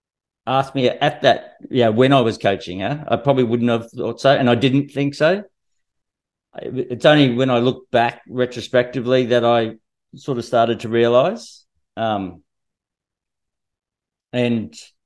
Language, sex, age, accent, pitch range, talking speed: English, male, 50-69, Australian, 100-125 Hz, 150 wpm